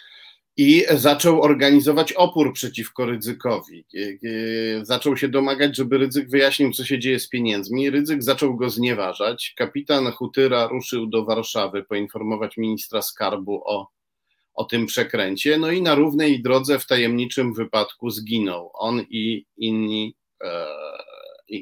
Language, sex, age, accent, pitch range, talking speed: Polish, male, 40-59, native, 110-130 Hz, 130 wpm